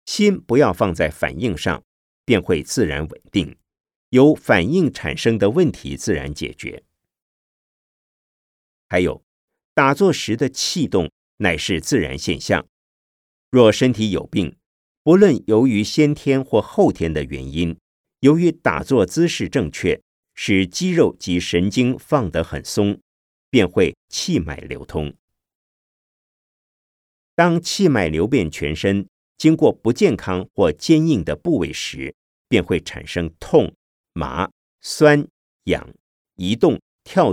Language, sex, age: Chinese, male, 50-69